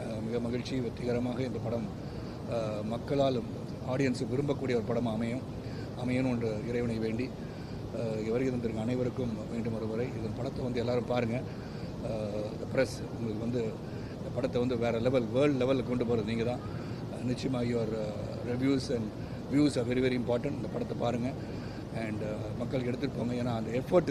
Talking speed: 135 wpm